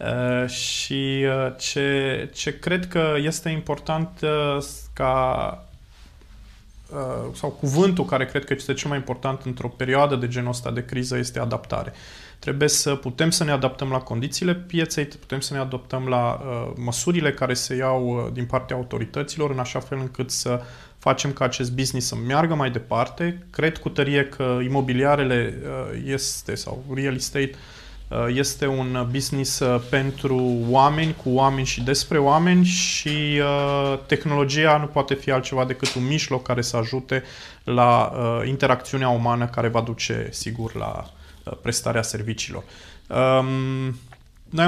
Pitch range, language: 120-140 Hz, Romanian